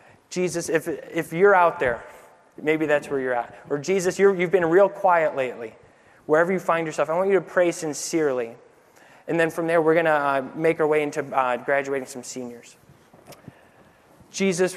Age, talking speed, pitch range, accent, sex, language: 20-39, 185 wpm, 145-175 Hz, American, male, English